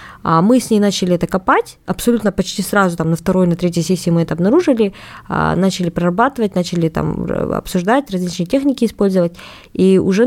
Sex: female